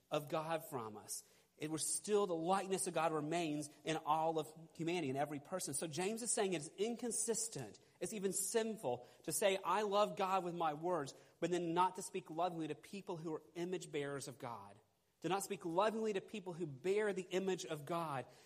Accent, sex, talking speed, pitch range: American, male, 200 wpm, 145-185 Hz